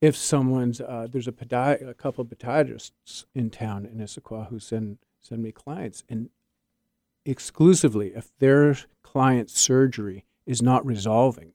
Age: 50-69